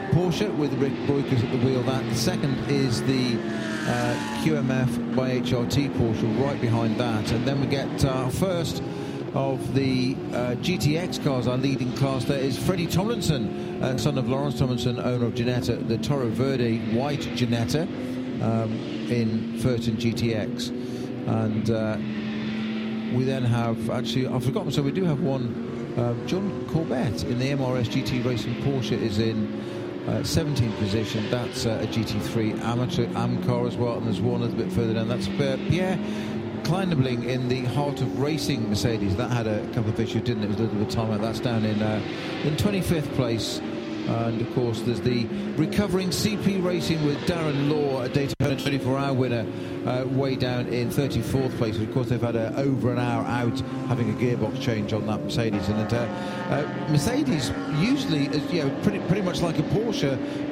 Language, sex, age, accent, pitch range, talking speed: English, male, 40-59, British, 115-135 Hz, 180 wpm